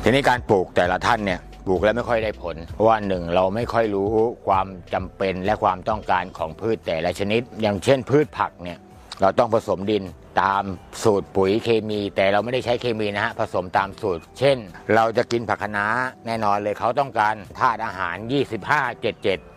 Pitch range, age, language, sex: 95-120 Hz, 60-79, Thai, male